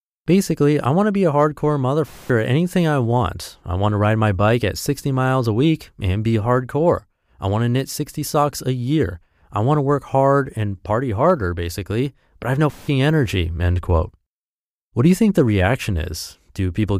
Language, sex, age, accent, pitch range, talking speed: English, male, 30-49, American, 90-140 Hz, 210 wpm